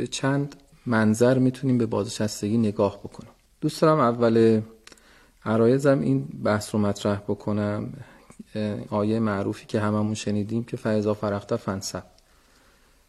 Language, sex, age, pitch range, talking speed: Persian, male, 40-59, 105-125 Hz, 115 wpm